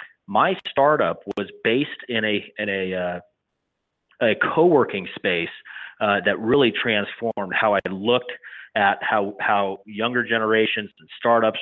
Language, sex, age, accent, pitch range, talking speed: English, male, 30-49, American, 95-115 Hz, 135 wpm